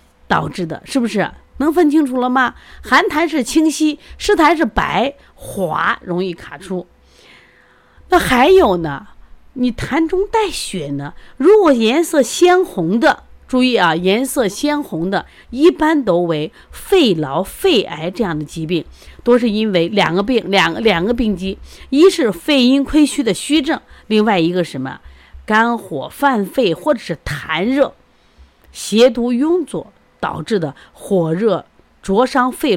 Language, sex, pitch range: Chinese, female, 170-280 Hz